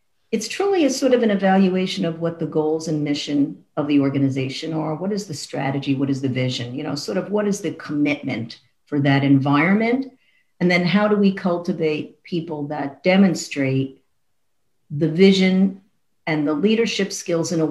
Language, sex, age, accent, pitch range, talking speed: English, female, 50-69, American, 150-195 Hz, 180 wpm